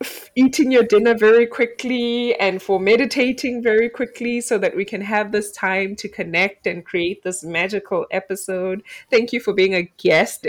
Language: English